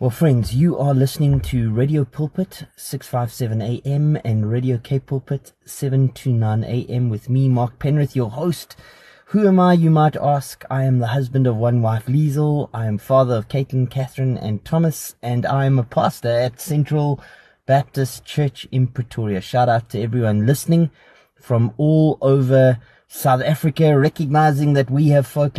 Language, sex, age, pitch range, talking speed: English, male, 20-39, 115-145 Hz, 165 wpm